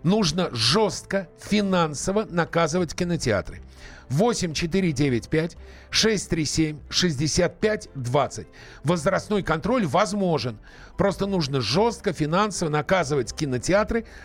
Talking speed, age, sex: 95 wpm, 40-59, male